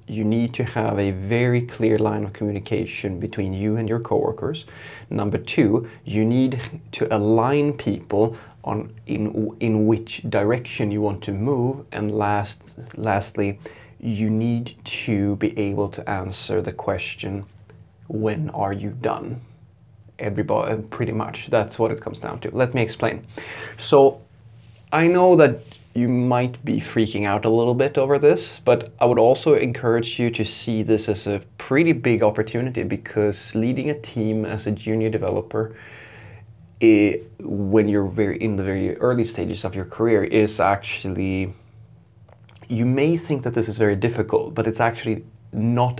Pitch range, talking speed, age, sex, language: 105-120 Hz, 155 wpm, 30-49, male, English